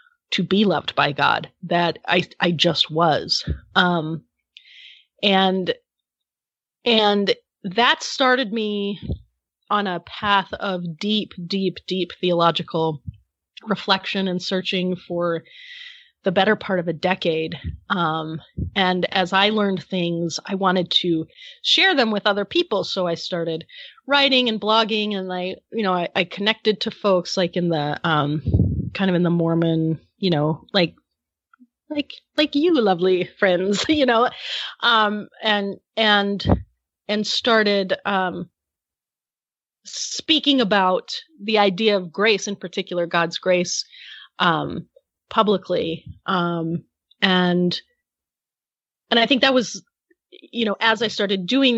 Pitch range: 175-220 Hz